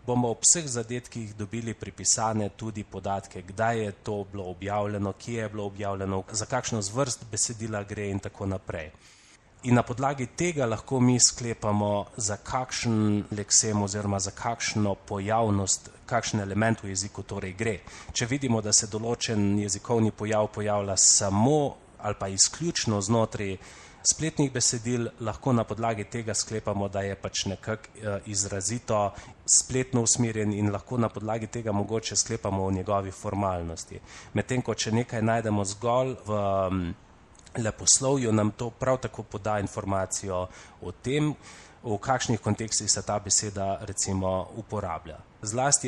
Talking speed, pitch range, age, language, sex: 140 wpm, 100-115 Hz, 30-49, Italian, male